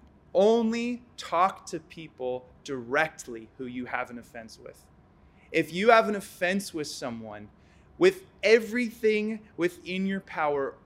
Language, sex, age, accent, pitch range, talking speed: English, male, 20-39, American, 130-180 Hz, 125 wpm